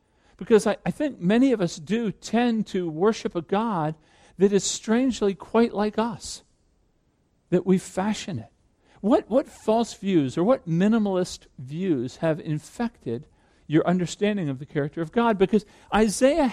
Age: 50-69